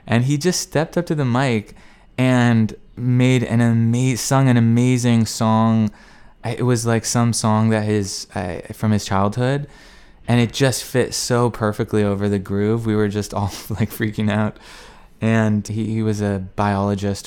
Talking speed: 170 wpm